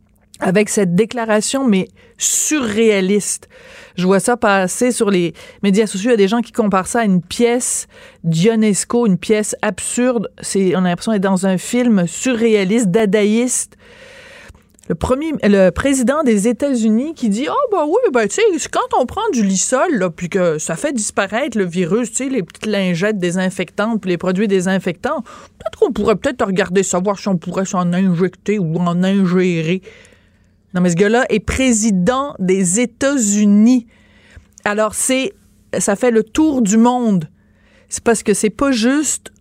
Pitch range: 185-235 Hz